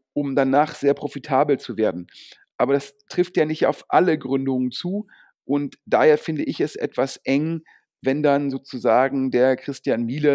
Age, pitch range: 40-59, 130-155 Hz